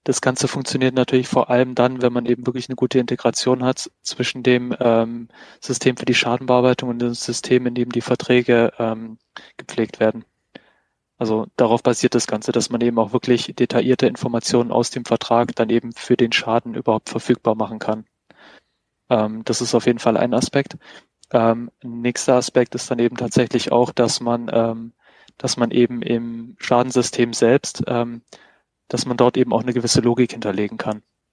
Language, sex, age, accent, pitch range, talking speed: German, male, 20-39, German, 115-125 Hz, 175 wpm